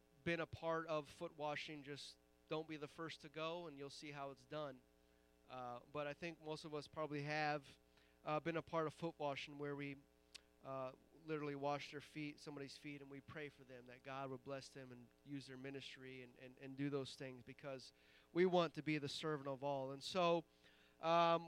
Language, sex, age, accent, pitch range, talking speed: English, male, 30-49, American, 130-165 Hz, 210 wpm